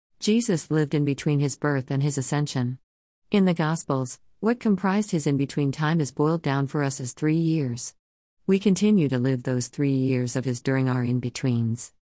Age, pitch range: 50-69, 130-165 Hz